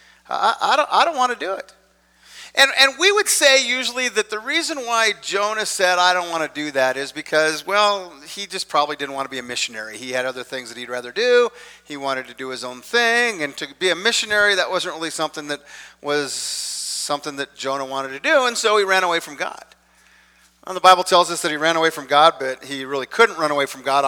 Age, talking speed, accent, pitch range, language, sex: 50-69, 235 wpm, American, 145-190 Hz, English, male